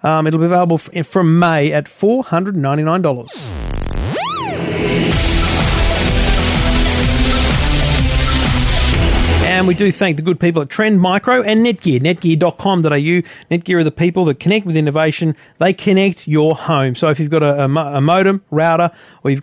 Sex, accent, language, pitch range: male, Australian, English, 145-190 Hz